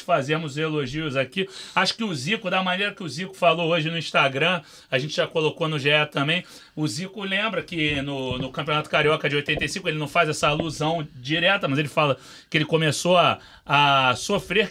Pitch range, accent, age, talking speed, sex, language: 155-185 Hz, Brazilian, 40-59, 195 wpm, male, Portuguese